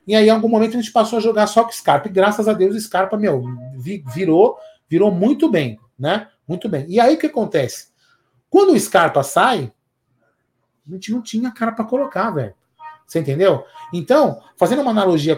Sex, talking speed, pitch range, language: male, 200 wpm, 155-240 Hz, Portuguese